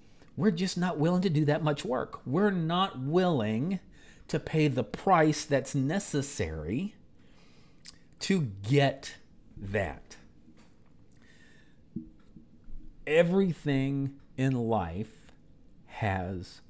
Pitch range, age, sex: 100-140 Hz, 50-69, male